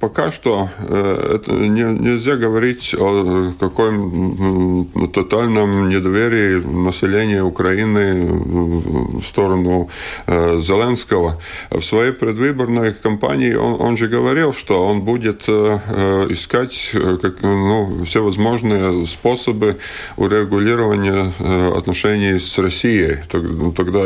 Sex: male